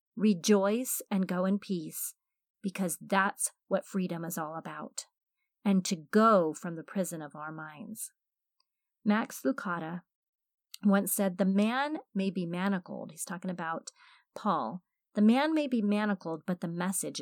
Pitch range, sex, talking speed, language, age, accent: 185-245 Hz, female, 145 wpm, English, 40-59, American